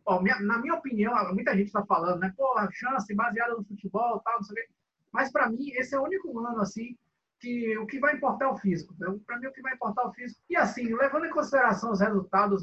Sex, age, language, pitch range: male, 20-39, Portuguese, 185-230 Hz